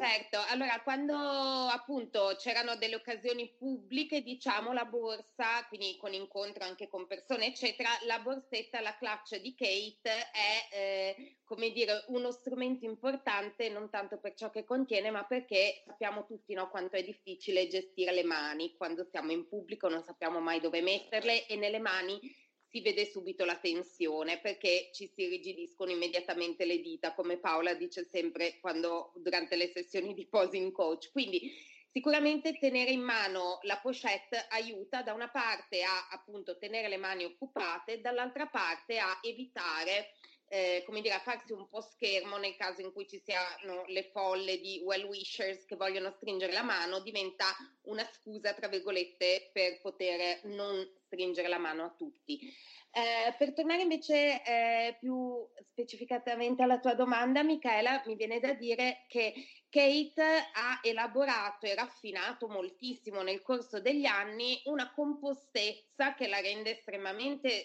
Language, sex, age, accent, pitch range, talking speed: Italian, female, 30-49, native, 190-250 Hz, 155 wpm